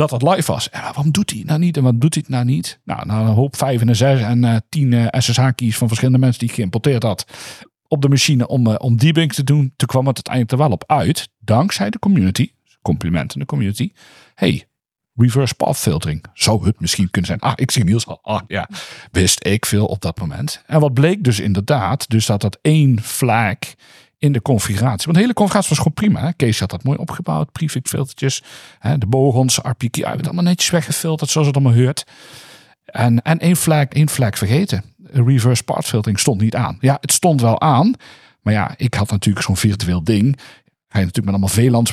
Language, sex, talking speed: Dutch, male, 220 wpm